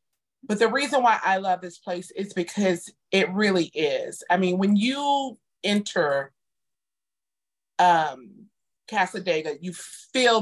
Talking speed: 125 wpm